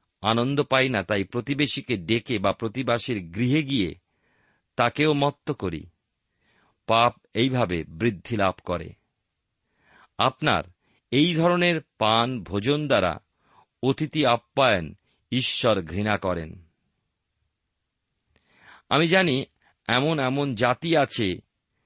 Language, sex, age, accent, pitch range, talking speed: Bengali, male, 50-69, native, 100-150 Hz, 95 wpm